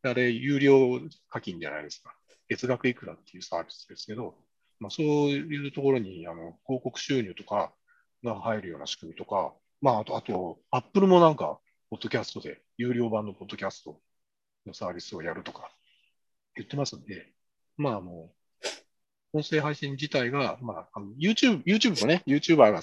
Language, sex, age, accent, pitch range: Japanese, male, 40-59, native, 115-150 Hz